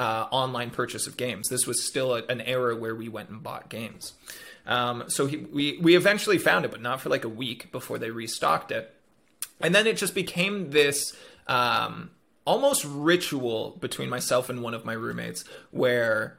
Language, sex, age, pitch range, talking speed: English, male, 30-49, 115-145 Hz, 190 wpm